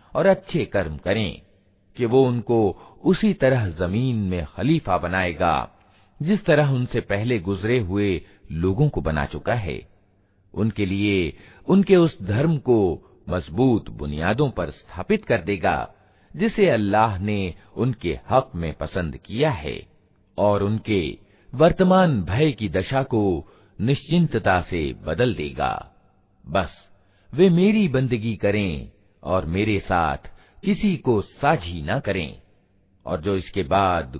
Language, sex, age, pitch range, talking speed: Hindi, male, 50-69, 90-125 Hz, 130 wpm